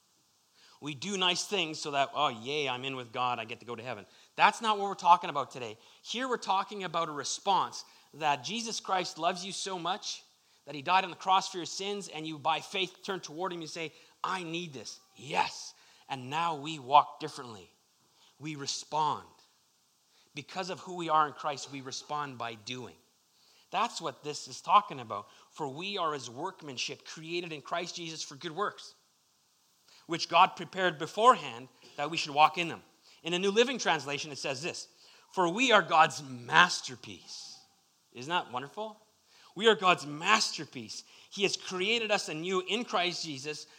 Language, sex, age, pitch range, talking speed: English, male, 30-49, 145-190 Hz, 185 wpm